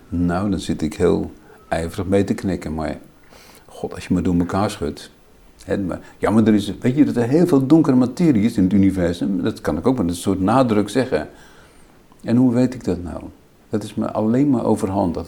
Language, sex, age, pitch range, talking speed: Dutch, male, 50-69, 95-115 Hz, 220 wpm